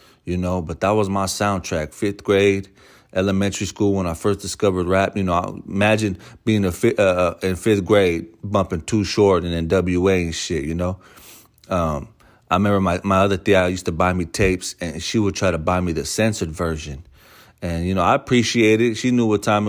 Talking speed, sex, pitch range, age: 205 wpm, male, 85-105 Hz, 30-49